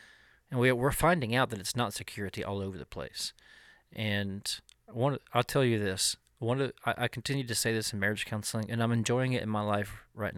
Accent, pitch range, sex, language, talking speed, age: American, 100-120 Hz, male, English, 200 wpm, 40-59